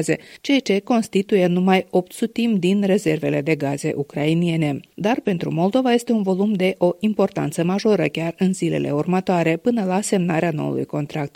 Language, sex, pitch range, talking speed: Romanian, female, 160-220 Hz, 160 wpm